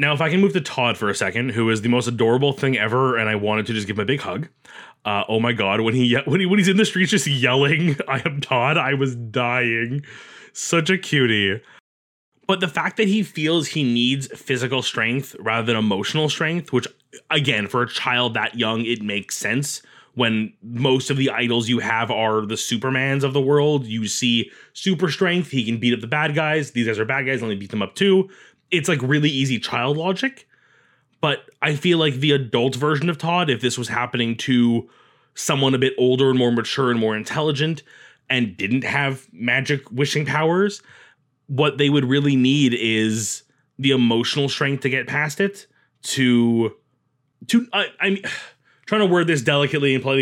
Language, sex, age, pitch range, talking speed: English, male, 20-39, 120-150 Hz, 200 wpm